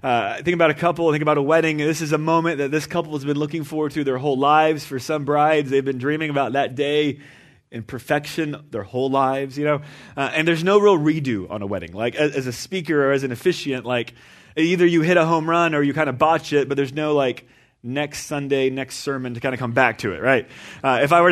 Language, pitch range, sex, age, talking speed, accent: English, 135-165 Hz, male, 30-49, 260 wpm, American